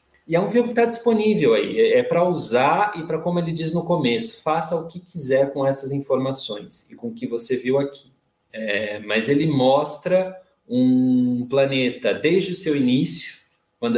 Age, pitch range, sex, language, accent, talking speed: 20-39, 125-165 Hz, male, Portuguese, Brazilian, 185 wpm